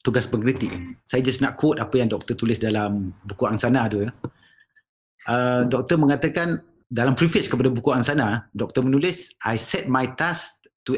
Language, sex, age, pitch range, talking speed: English, male, 30-49, 115-140 Hz, 165 wpm